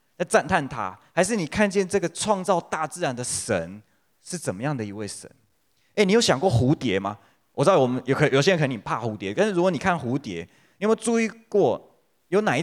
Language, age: Chinese, 20-39